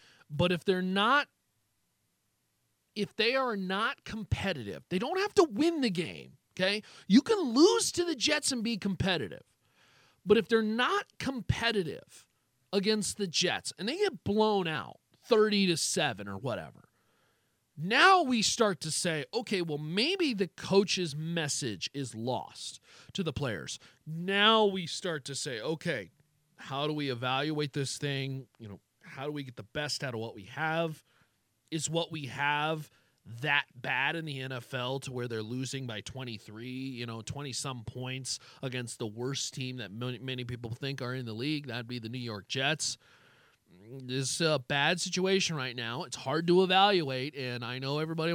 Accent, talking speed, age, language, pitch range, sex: American, 170 wpm, 40-59, English, 130-190 Hz, male